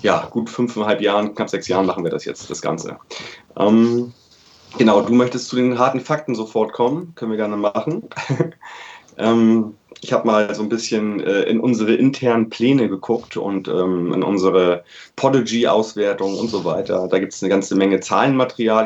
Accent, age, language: German, 30-49, German